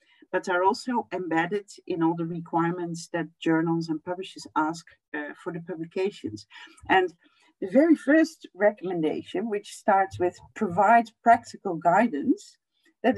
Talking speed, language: 130 wpm, English